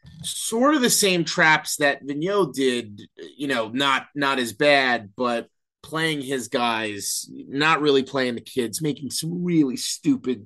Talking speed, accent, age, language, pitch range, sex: 155 wpm, American, 30-49, English, 120-155 Hz, male